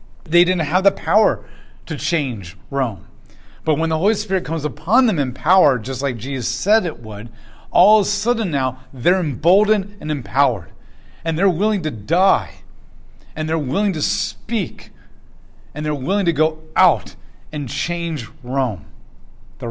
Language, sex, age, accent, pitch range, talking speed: English, male, 40-59, American, 120-170 Hz, 160 wpm